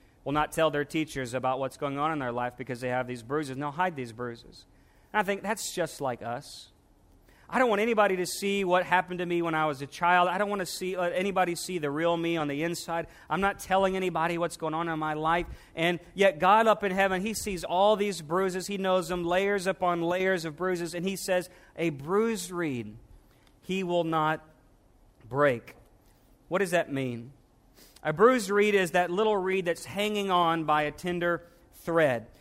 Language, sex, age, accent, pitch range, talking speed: English, male, 40-59, American, 155-195 Hz, 210 wpm